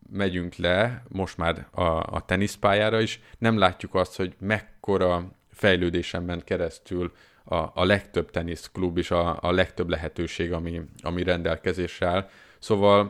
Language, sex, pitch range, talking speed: Hungarian, male, 90-105 Hz, 130 wpm